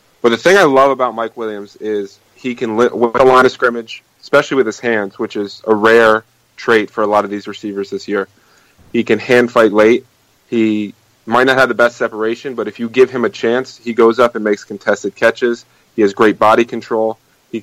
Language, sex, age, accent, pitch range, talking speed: English, male, 30-49, American, 110-125 Hz, 220 wpm